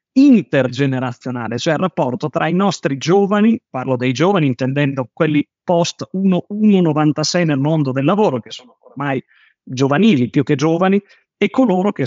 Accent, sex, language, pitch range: native, male, Italian, 135-175 Hz